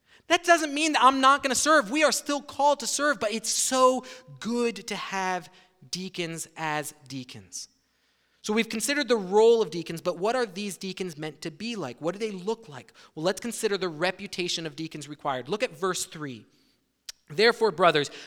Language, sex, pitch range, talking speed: English, male, 180-245 Hz, 195 wpm